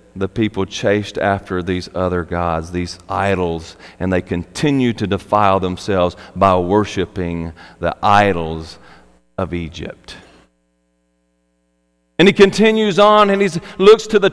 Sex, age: male, 40-59